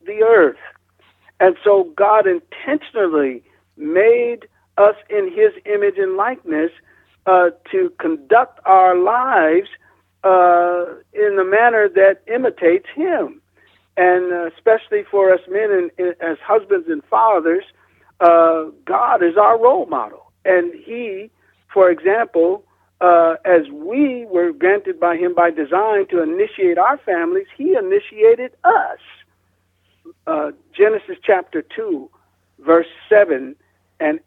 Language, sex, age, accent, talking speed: English, male, 60-79, American, 120 wpm